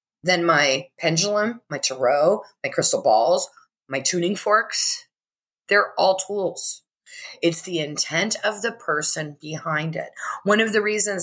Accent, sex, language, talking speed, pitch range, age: American, female, English, 140 wpm, 165-210 Hz, 30-49